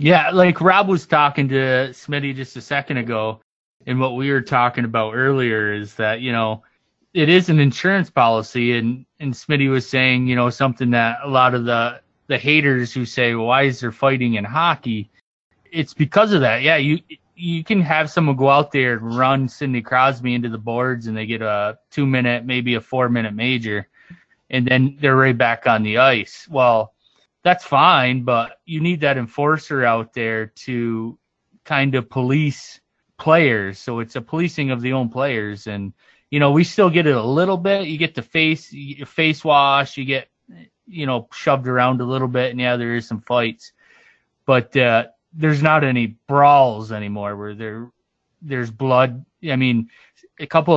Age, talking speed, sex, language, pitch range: 20-39, 190 wpm, male, English, 115-145 Hz